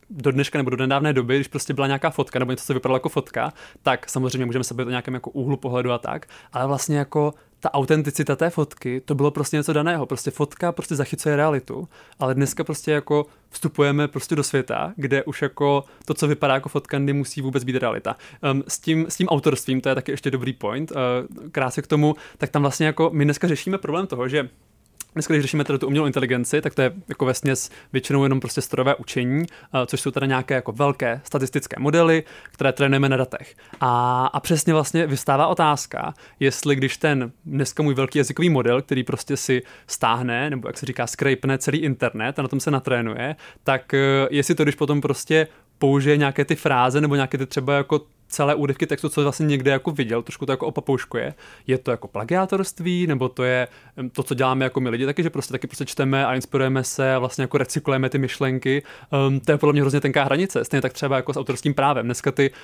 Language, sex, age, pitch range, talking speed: Czech, male, 20-39, 130-150 Hz, 210 wpm